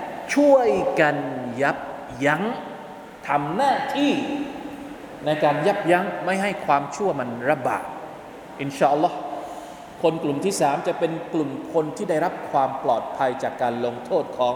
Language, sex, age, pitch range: Thai, male, 20-39, 150-185 Hz